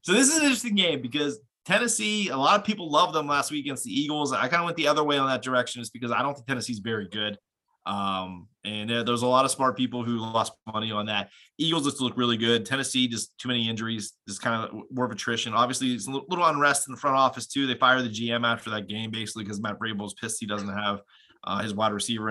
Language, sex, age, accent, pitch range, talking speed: English, male, 20-39, American, 100-130 Hz, 260 wpm